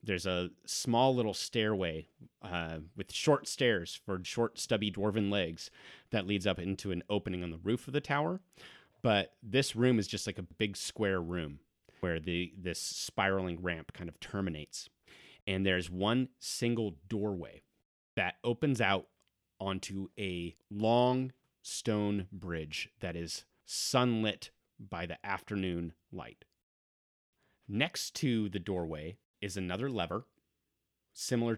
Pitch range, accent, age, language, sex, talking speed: 90-110 Hz, American, 30-49, English, male, 135 wpm